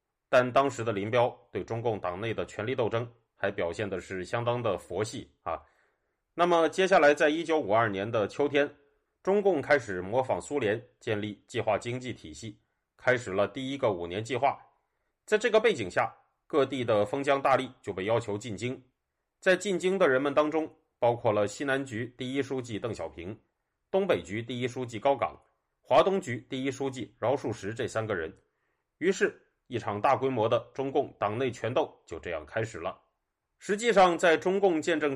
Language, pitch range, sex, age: Chinese, 115-165 Hz, male, 30-49